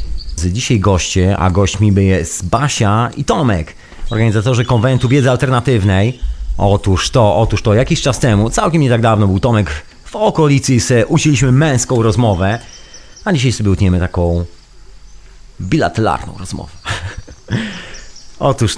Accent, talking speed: native, 125 wpm